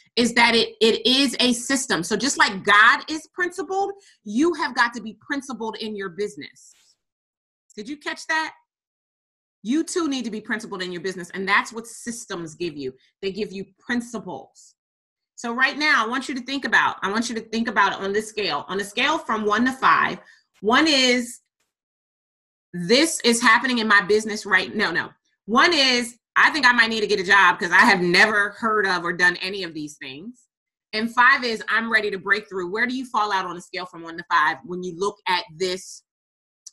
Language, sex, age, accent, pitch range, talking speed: English, female, 30-49, American, 185-245 Hz, 215 wpm